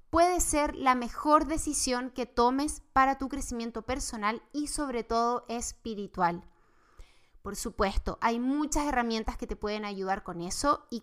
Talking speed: 145 wpm